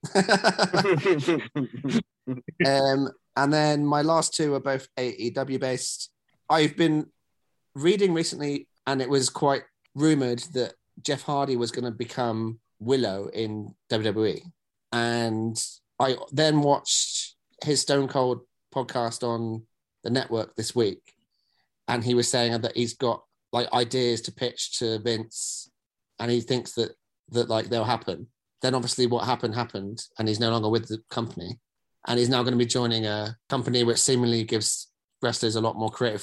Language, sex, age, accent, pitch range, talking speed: English, male, 30-49, British, 115-135 Hz, 150 wpm